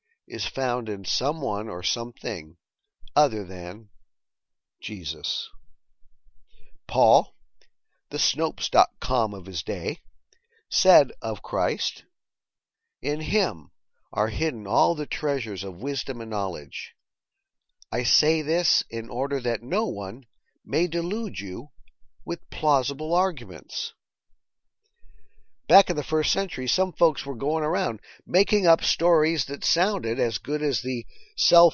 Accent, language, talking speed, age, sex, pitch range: American, English, 120 wpm, 50-69, male, 115-165 Hz